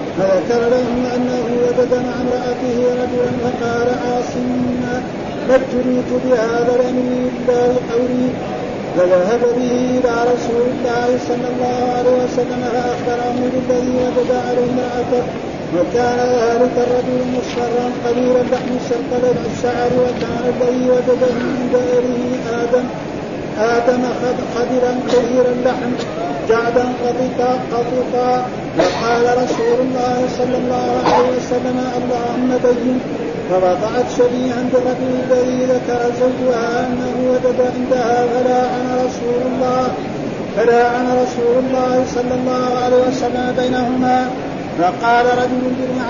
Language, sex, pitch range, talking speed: Arabic, male, 245-250 Hz, 110 wpm